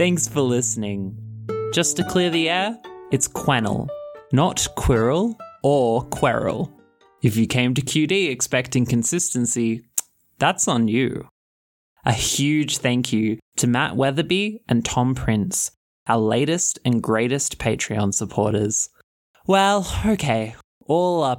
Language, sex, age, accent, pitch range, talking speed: English, male, 20-39, Australian, 115-160 Hz, 125 wpm